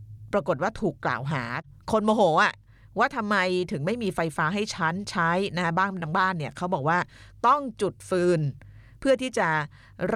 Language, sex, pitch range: Thai, female, 145-195 Hz